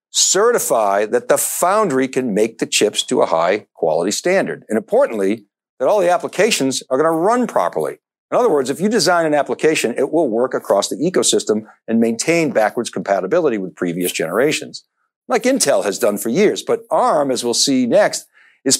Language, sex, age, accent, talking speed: English, male, 60-79, American, 185 wpm